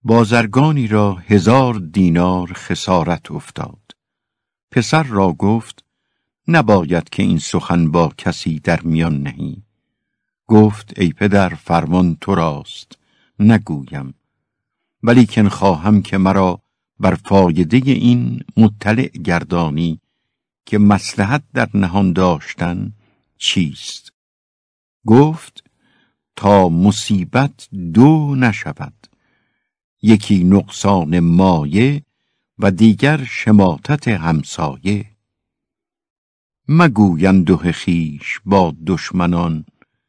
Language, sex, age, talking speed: Persian, male, 60-79, 85 wpm